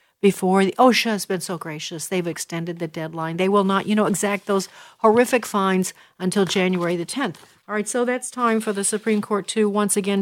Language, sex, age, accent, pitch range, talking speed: English, female, 50-69, American, 185-220 Hz, 210 wpm